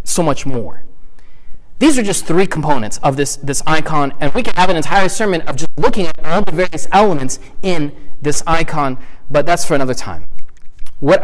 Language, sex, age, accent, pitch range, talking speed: English, male, 30-49, American, 145-195 Hz, 190 wpm